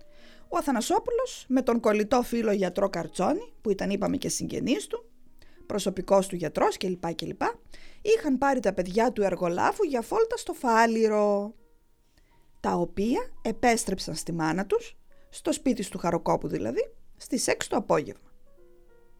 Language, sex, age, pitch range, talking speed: English, female, 20-39, 190-310 Hz, 140 wpm